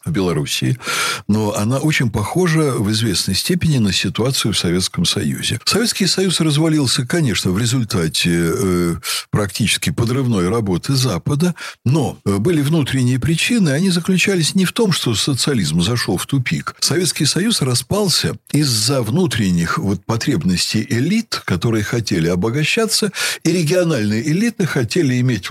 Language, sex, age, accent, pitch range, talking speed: Russian, male, 60-79, native, 110-175 Hz, 125 wpm